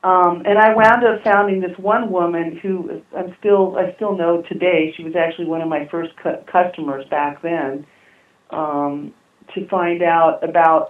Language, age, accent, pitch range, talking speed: English, 40-59, American, 150-185 Hz, 175 wpm